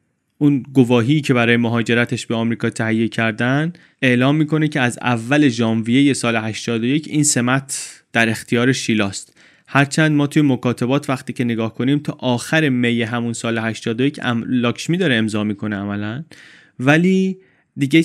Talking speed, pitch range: 145 wpm, 115-145 Hz